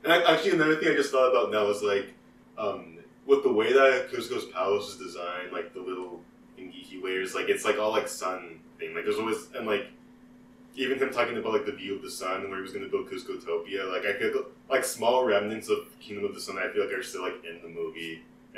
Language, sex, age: English, male, 20-39